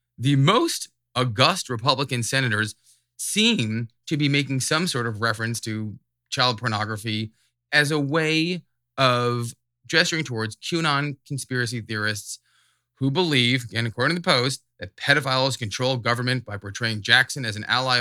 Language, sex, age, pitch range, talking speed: English, male, 20-39, 105-130 Hz, 140 wpm